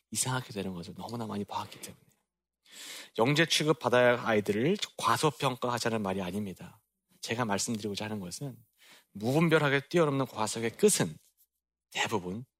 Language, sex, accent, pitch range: Korean, male, native, 100-135 Hz